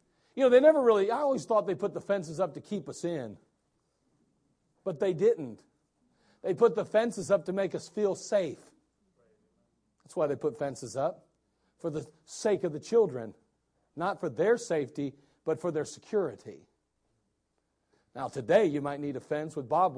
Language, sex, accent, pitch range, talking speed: English, male, American, 140-210 Hz, 175 wpm